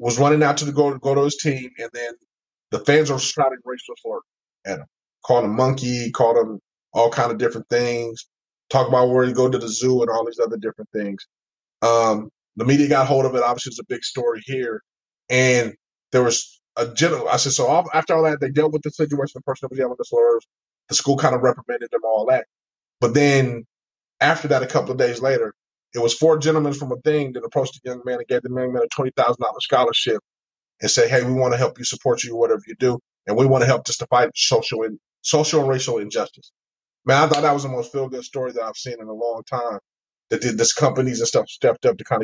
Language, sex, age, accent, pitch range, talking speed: English, male, 20-39, American, 120-150 Hz, 245 wpm